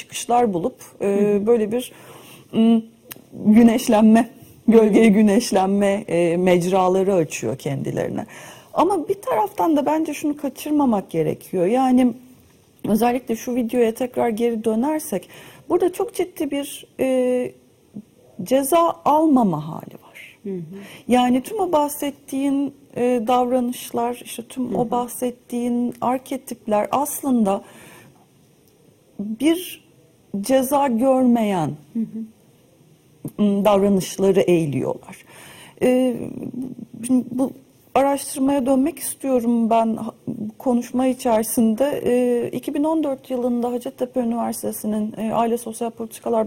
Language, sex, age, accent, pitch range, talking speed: Turkish, female, 40-59, native, 210-260 Hz, 85 wpm